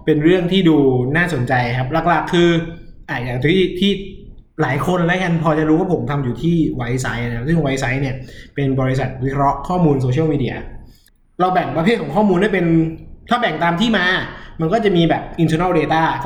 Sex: male